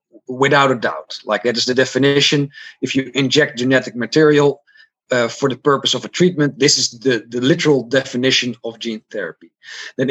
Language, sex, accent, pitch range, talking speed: English, male, Dutch, 130-160 Hz, 180 wpm